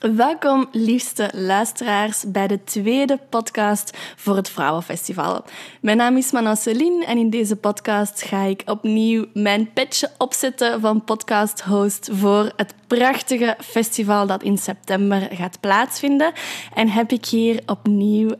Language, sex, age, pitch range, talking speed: Dutch, female, 20-39, 195-235 Hz, 135 wpm